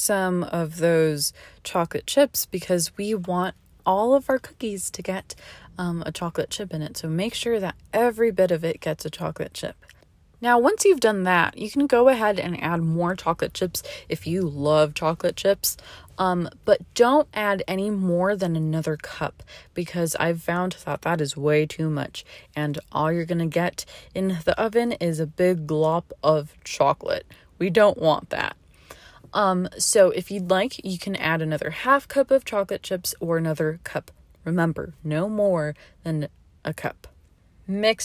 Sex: female